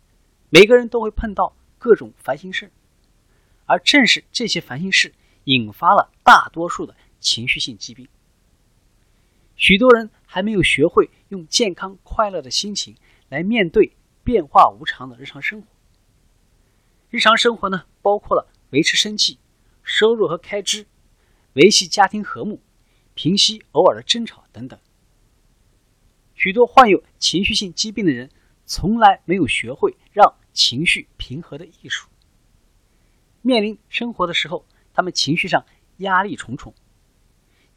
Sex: male